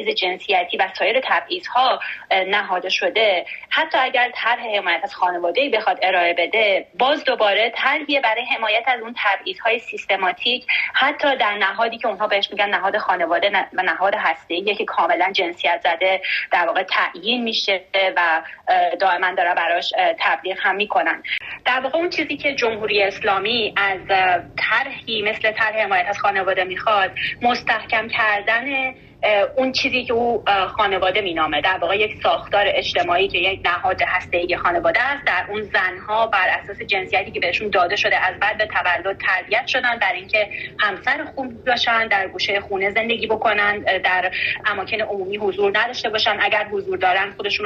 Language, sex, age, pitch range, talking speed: Persian, female, 30-49, 195-245 Hz, 150 wpm